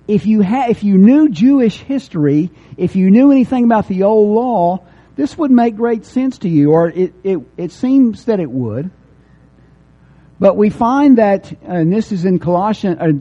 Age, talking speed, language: 50-69, 180 wpm, English